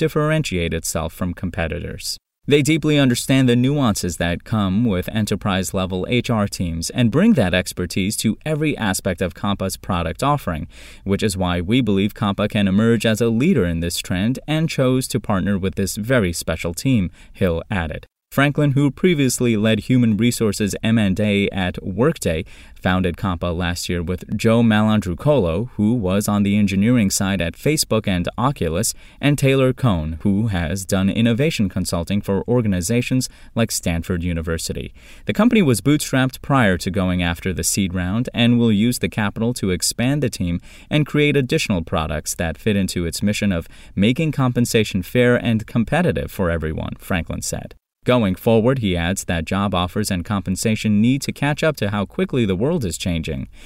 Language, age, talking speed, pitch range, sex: English, 20-39, 170 wpm, 90-125 Hz, male